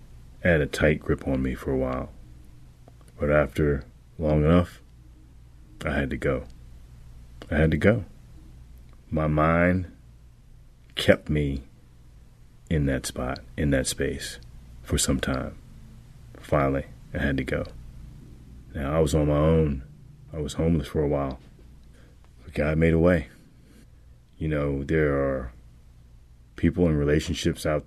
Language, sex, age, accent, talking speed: English, male, 30-49, American, 140 wpm